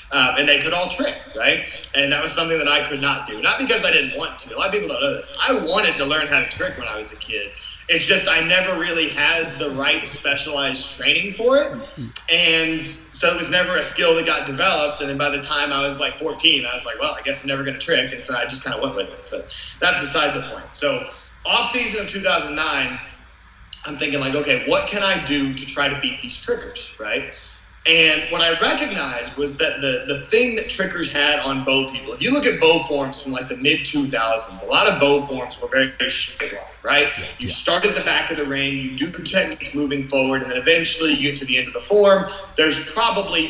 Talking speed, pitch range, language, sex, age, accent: 245 wpm, 140-185 Hz, English, male, 30-49, American